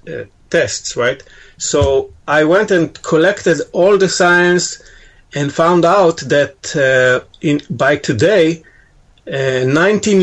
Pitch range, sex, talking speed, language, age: 135-170 Hz, male, 125 wpm, English, 40-59